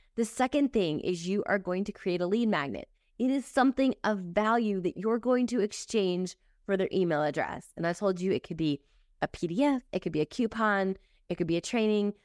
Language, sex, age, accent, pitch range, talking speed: English, female, 20-39, American, 165-215 Hz, 220 wpm